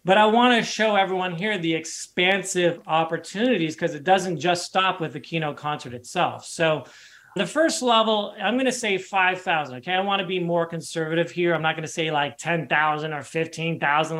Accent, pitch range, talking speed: American, 145-190 Hz, 195 wpm